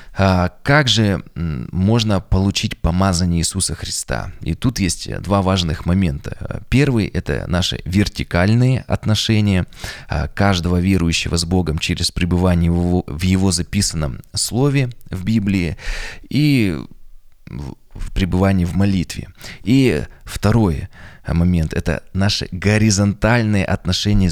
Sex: male